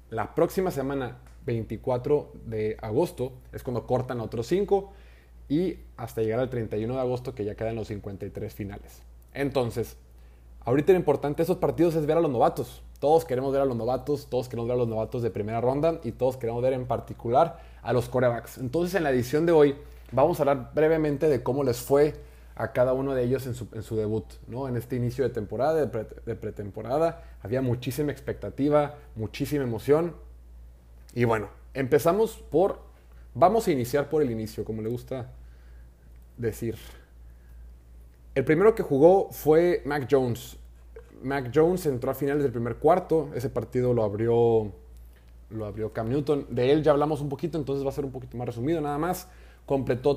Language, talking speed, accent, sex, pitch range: Spanish, 180 wpm, Mexican, male, 110-145 Hz